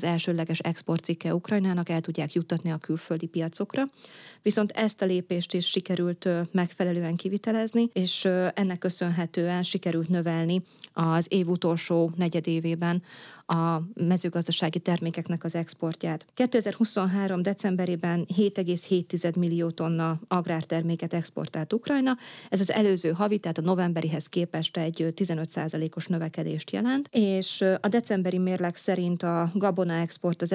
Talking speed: 120 wpm